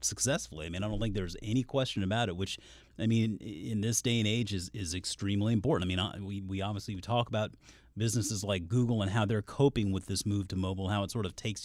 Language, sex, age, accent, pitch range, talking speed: English, male, 30-49, American, 95-130 Hz, 245 wpm